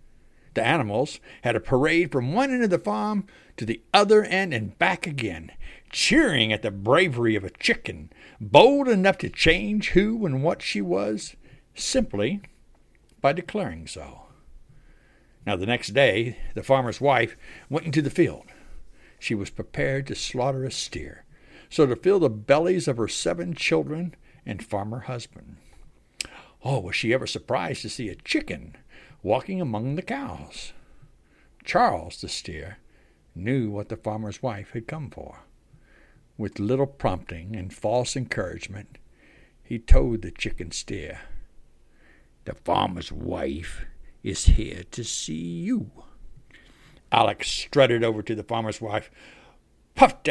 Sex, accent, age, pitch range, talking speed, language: male, American, 60-79, 105-160 Hz, 140 wpm, English